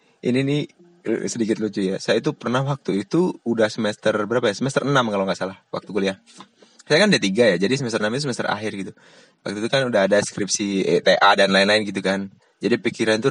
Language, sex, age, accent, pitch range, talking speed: Indonesian, male, 20-39, native, 105-135 Hz, 210 wpm